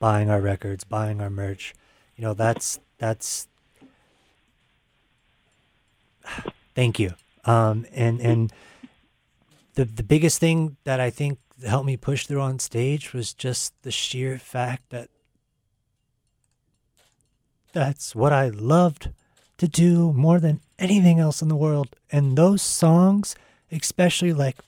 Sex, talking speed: male, 125 wpm